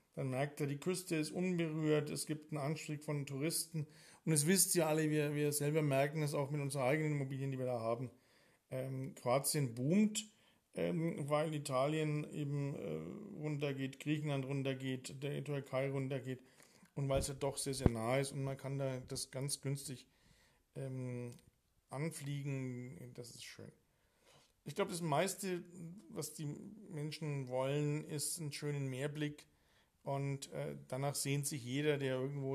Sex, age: male, 40-59